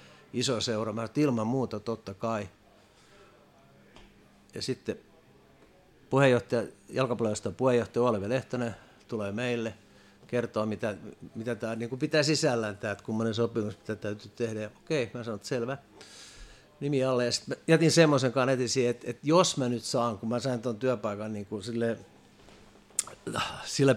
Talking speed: 150 wpm